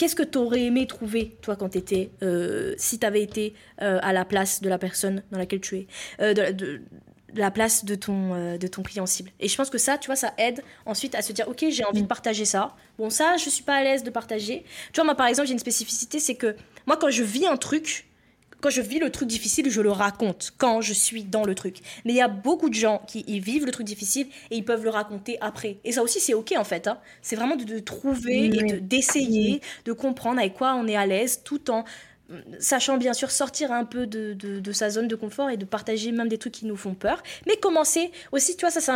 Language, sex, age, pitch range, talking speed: French, female, 20-39, 210-270 Hz, 265 wpm